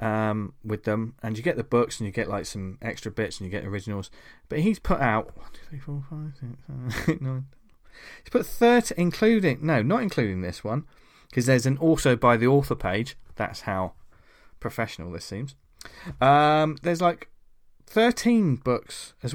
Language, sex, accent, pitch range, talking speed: English, male, British, 105-155 Hz, 185 wpm